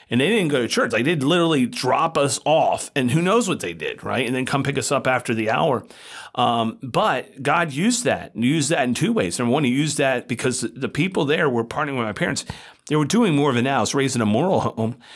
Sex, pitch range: male, 120-160 Hz